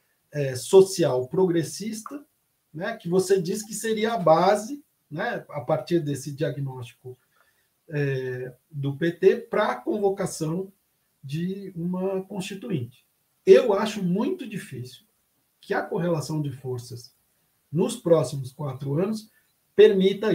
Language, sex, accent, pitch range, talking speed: Portuguese, male, Brazilian, 140-195 Hz, 110 wpm